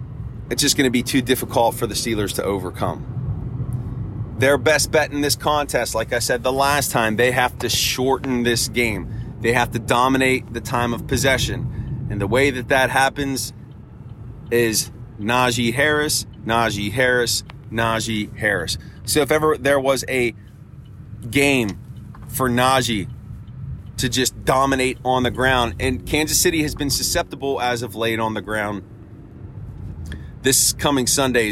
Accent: American